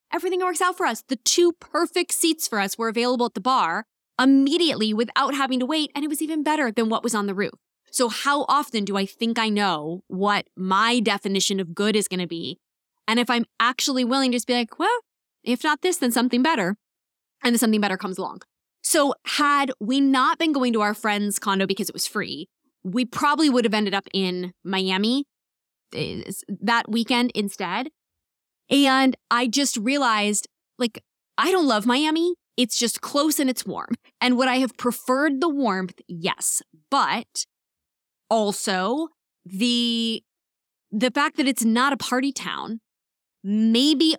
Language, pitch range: English, 215-285 Hz